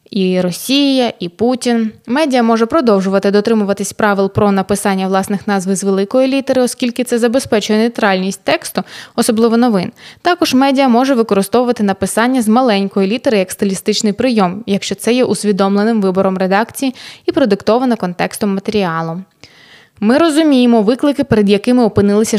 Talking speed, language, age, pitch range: 135 wpm, Ukrainian, 20-39, 200-245 Hz